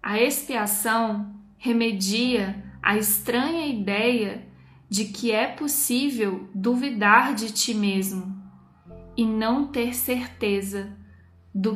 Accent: Brazilian